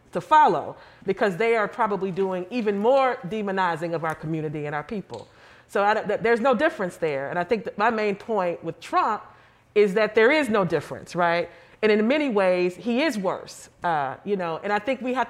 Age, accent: 40-59, American